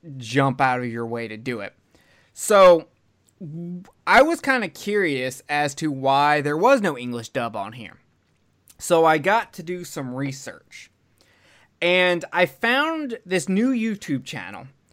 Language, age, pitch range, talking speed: English, 20-39, 130-180 Hz, 155 wpm